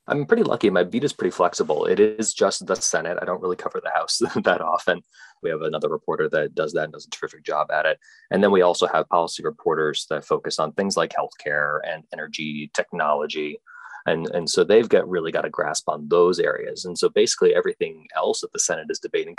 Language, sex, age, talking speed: English, male, 30-49, 225 wpm